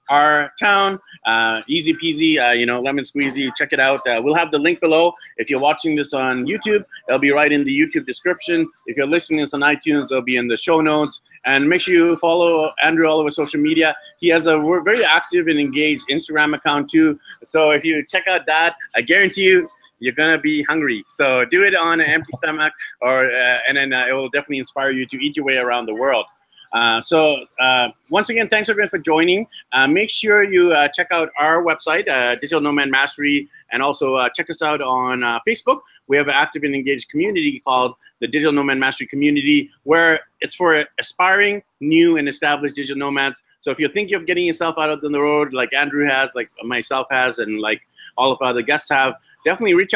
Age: 30-49